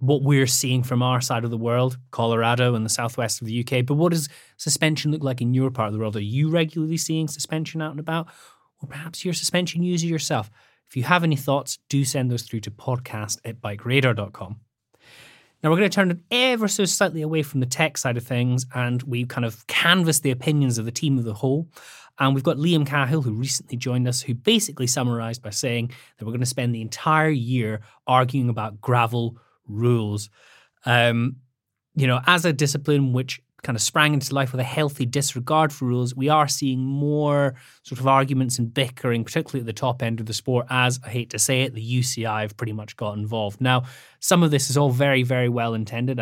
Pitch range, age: 115-145 Hz, 30-49